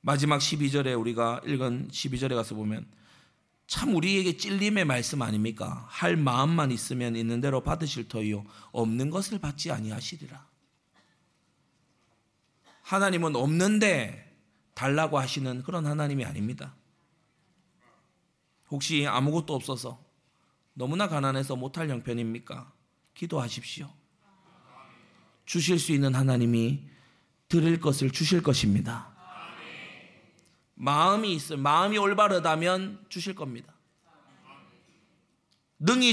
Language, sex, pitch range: Korean, male, 130-205 Hz